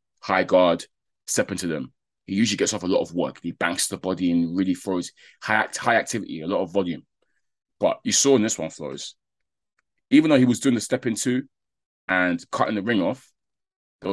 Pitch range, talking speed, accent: 85-110 Hz, 210 wpm, British